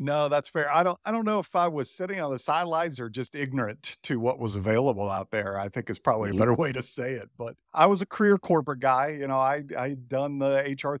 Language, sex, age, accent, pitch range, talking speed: English, male, 50-69, American, 125-155 Hz, 260 wpm